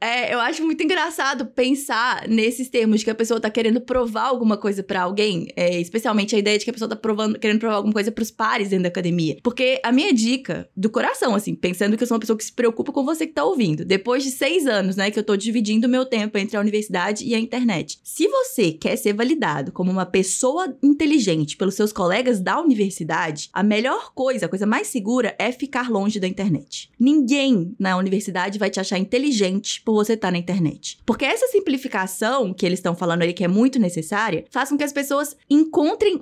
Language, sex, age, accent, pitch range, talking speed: English, female, 20-39, Brazilian, 205-280 Hz, 215 wpm